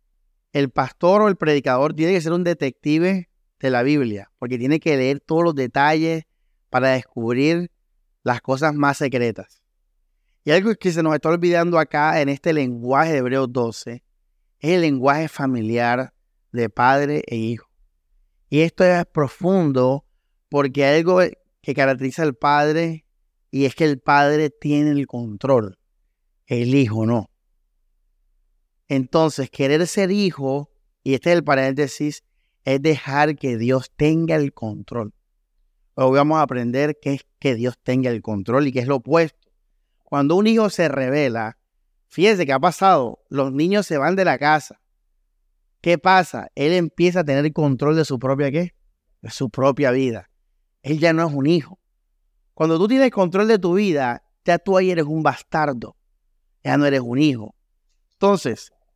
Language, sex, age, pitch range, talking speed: Spanish, male, 30-49, 115-160 Hz, 160 wpm